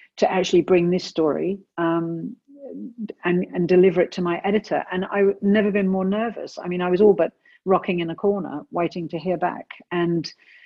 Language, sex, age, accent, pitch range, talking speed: English, female, 50-69, British, 165-200 Hz, 190 wpm